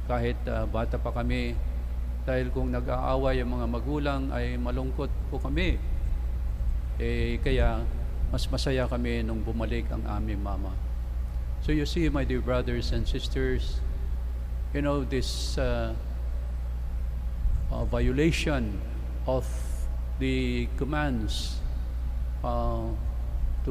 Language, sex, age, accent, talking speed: English, male, 50-69, Filipino, 110 wpm